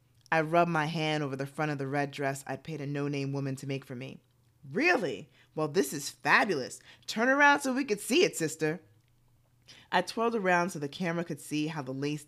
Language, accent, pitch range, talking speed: English, American, 130-185 Hz, 215 wpm